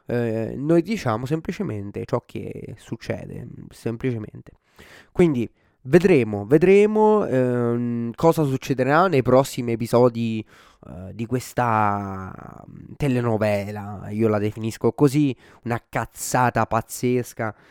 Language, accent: Italian, native